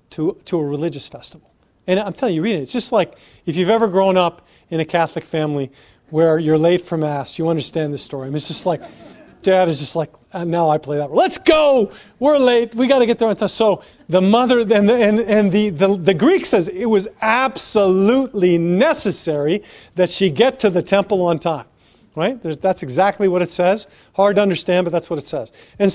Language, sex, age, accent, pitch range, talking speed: English, male, 40-59, American, 165-225 Hz, 220 wpm